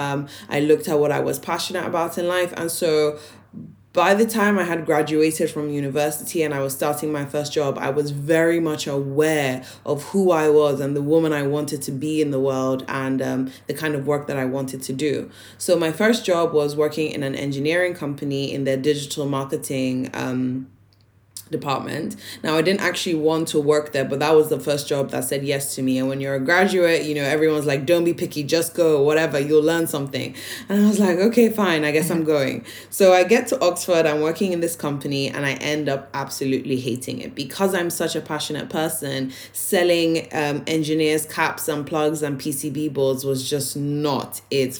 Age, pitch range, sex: 20-39, 140-165 Hz, female